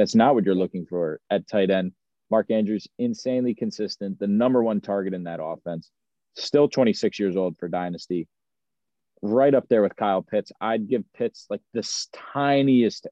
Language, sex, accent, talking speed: English, male, American, 175 wpm